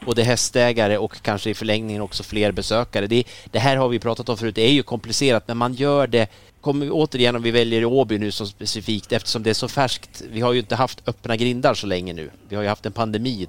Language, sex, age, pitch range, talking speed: Swedish, male, 30-49, 100-125 Hz, 250 wpm